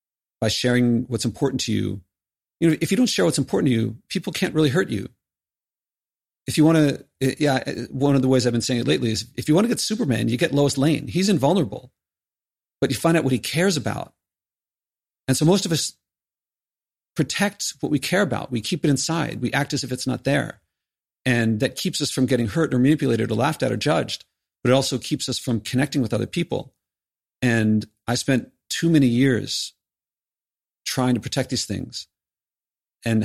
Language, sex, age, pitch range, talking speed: English, male, 40-59, 110-140 Hz, 205 wpm